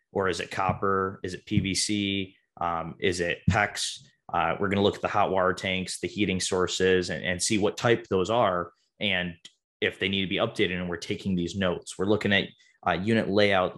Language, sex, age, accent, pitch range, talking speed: English, male, 20-39, American, 95-110 Hz, 210 wpm